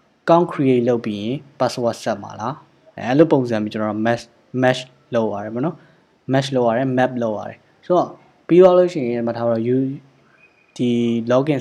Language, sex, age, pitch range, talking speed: English, male, 10-29, 110-135 Hz, 65 wpm